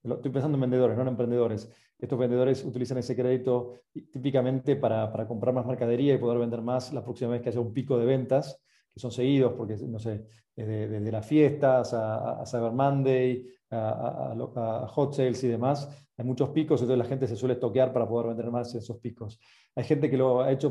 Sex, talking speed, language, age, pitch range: male, 215 wpm, Spanish, 40-59, 120-140 Hz